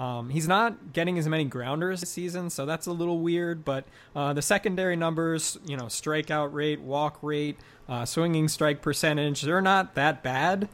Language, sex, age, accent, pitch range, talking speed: English, male, 20-39, American, 135-165 Hz, 185 wpm